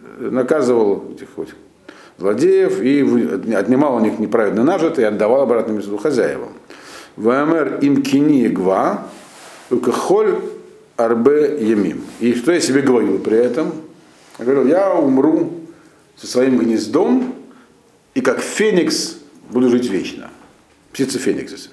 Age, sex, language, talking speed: 50-69, male, Russian, 115 wpm